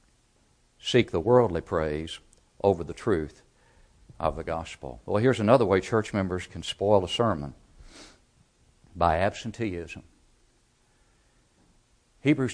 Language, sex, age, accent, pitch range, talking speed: English, male, 60-79, American, 100-125 Hz, 110 wpm